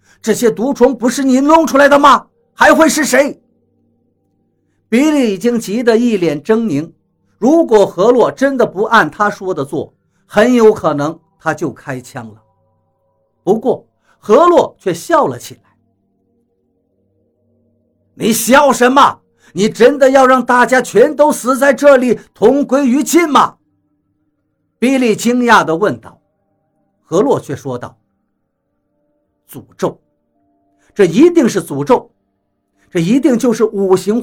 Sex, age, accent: male, 50-69, native